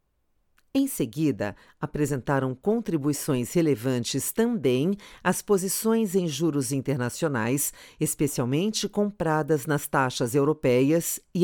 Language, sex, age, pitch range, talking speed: Portuguese, female, 50-69, 135-200 Hz, 90 wpm